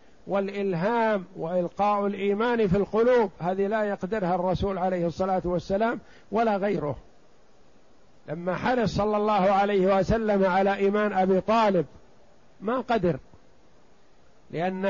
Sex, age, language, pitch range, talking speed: male, 50-69, Arabic, 180-210 Hz, 110 wpm